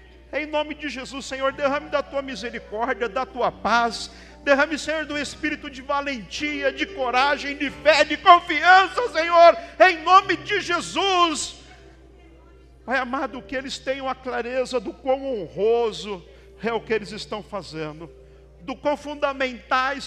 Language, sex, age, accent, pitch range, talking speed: Portuguese, male, 50-69, Brazilian, 185-260 Hz, 145 wpm